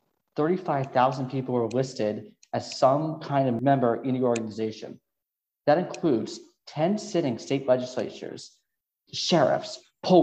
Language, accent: English, American